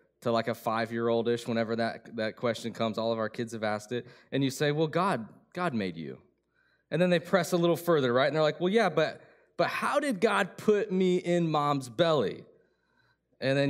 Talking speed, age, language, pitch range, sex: 215 wpm, 20-39, English, 150-195 Hz, male